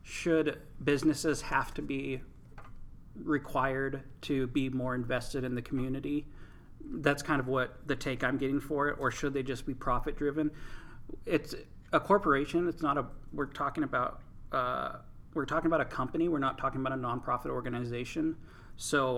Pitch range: 125-150 Hz